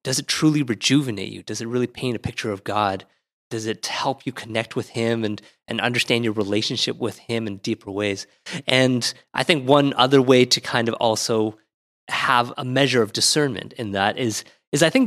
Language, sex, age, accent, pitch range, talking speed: English, male, 20-39, American, 110-140 Hz, 205 wpm